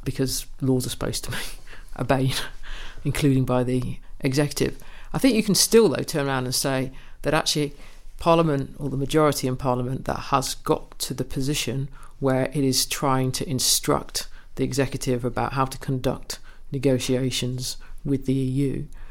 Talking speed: 160 wpm